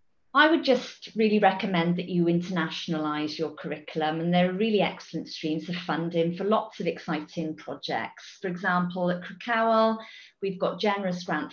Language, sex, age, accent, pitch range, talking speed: English, female, 30-49, British, 170-215 Hz, 160 wpm